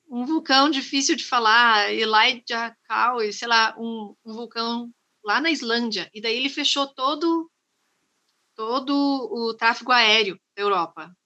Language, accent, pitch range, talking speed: Portuguese, Brazilian, 210-260 Hz, 140 wpm